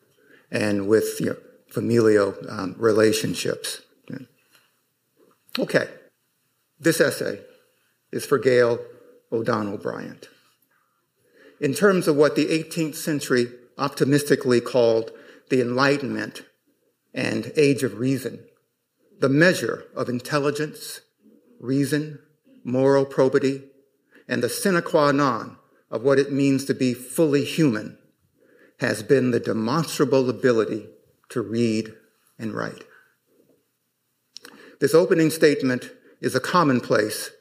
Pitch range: 120-160 Hz